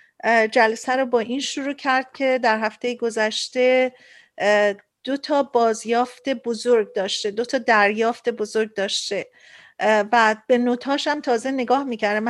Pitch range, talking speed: 225-260 Hz, 125 wpm